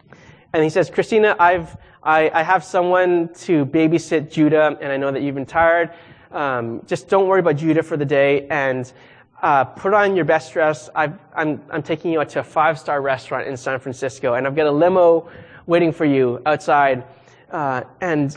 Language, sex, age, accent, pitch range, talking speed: English, male, 20-39, American, 145-200 Hz, 195 wpm